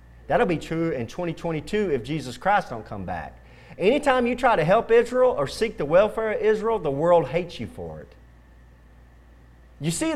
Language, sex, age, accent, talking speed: English, male, 40-59, American, 185 wpm